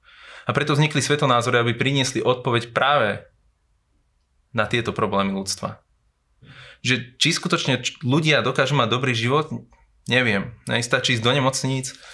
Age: 20-39